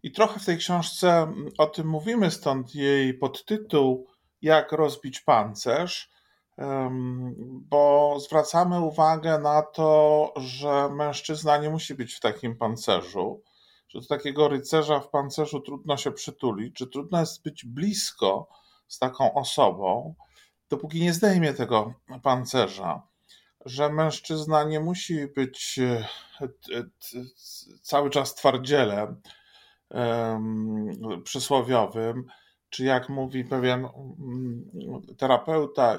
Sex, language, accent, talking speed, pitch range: male, Polish, native, 105 wpm, 125-155 Hz